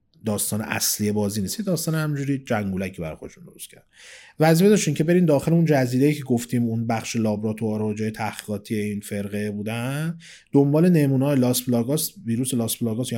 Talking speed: 170 wpm